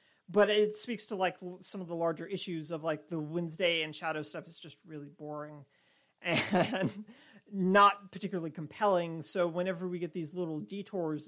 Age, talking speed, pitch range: 40-59, 170 wpm, 155-190 Hz